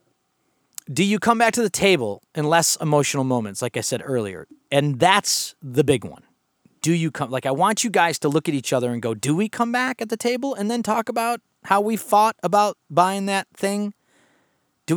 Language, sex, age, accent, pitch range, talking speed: English, male, 30-49, American, 135-190 Hz, 215 wpm